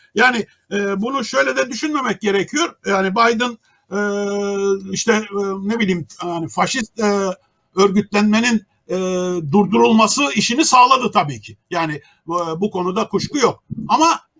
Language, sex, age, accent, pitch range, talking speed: Turkish, male, 60-79, native, 175-230 Hz, 100 wpm